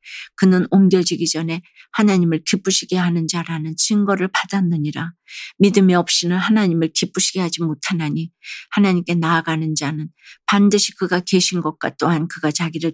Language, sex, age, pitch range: Korean, female, 50-69, 165-195 Hz